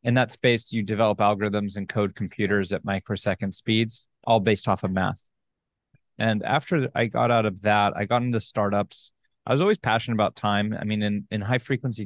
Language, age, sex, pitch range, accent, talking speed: English, 30-49, male, 105-120 Hz, American, 195 wpm